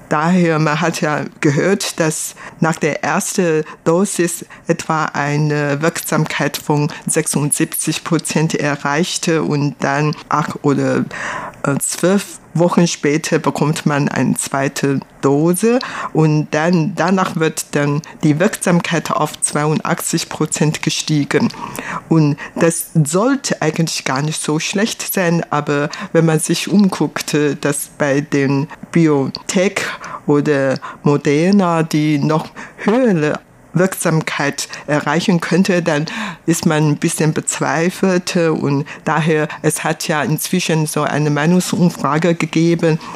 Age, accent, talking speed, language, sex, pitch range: 50-69, German, 115 wpm, German, female, 150-175 Hz